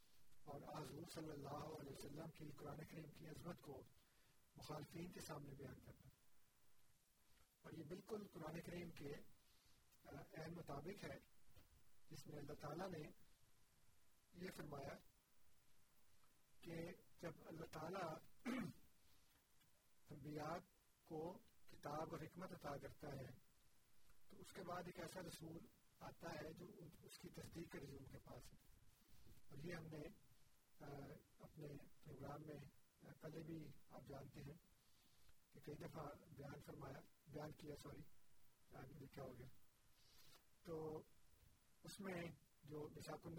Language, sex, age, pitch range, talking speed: Urdu, male, 50-69, 140-165 Hz, 95 wpm